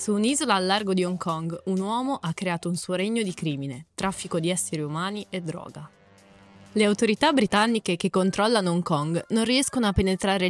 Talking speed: 190 wpm